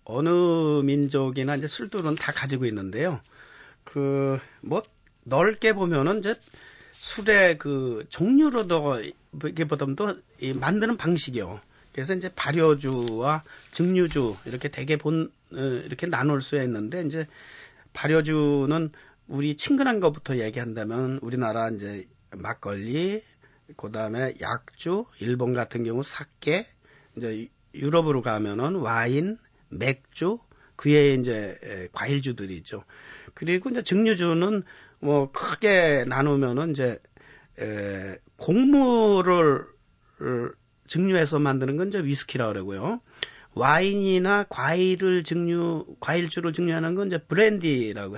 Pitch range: 125-175 Hz